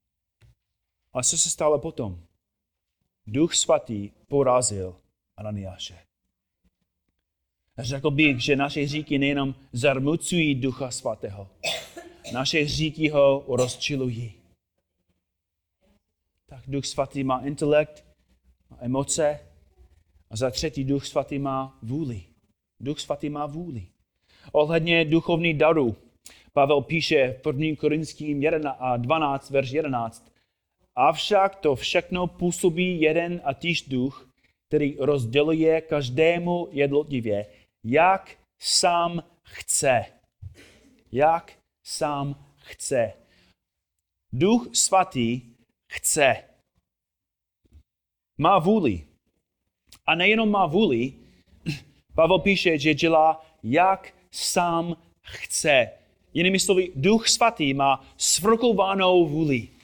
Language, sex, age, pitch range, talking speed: Czech, male, 30-49, 105-160 Hz, 90 wpm